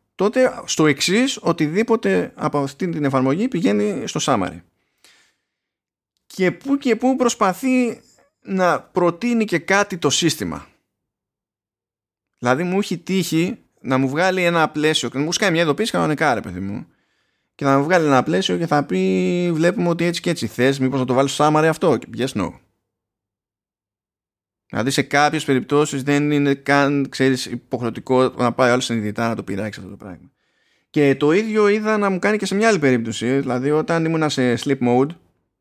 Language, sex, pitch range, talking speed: Greek, male, 115-160 Hz, 165 wpm